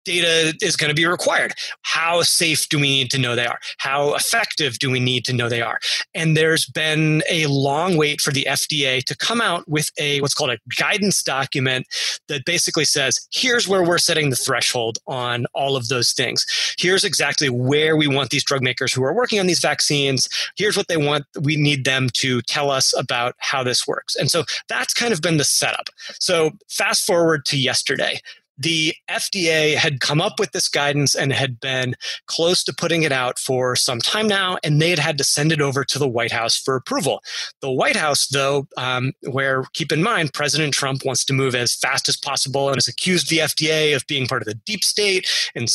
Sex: male